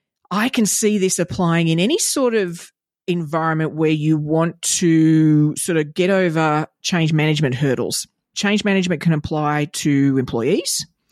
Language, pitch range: English, 150-180 Hz